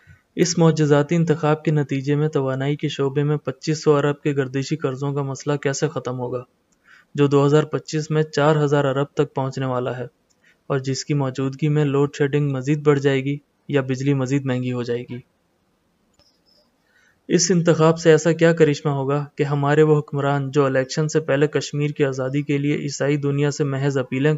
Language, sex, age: Urdu, male, 20-39